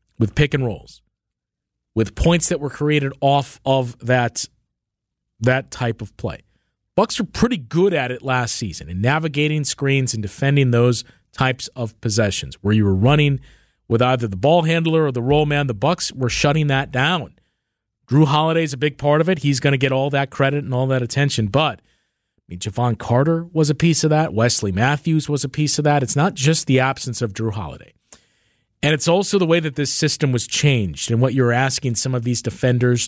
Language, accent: English, American